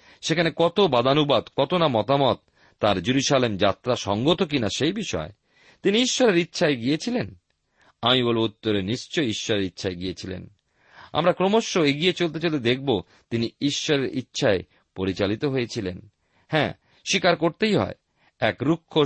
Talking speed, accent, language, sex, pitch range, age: 125 wpm, native, Bengali, male, 100-170 Hz, 40-59